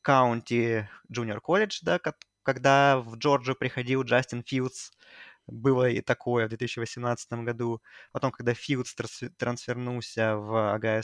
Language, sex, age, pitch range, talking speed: Russian, male, 20-39, 110-135 Hz, 120 wpm